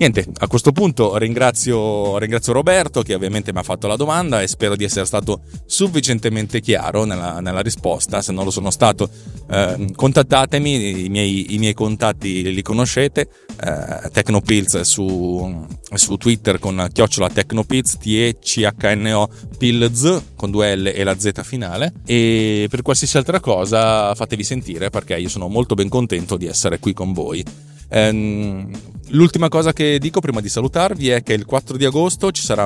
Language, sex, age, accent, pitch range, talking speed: Italian, male, 30-49, native, 100-135 Hz, 165 wpm